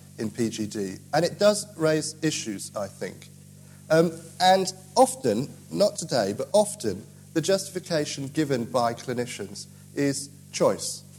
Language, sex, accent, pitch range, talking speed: English, male, British, 130-170 Hz, 125 wpm